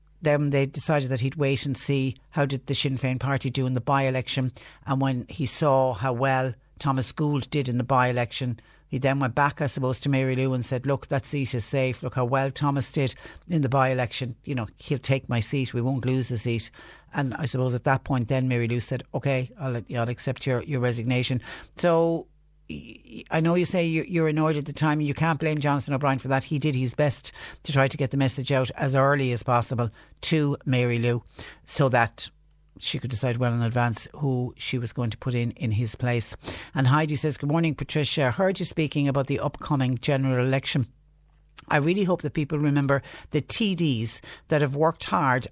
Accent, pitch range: Irish, 125-150 Hz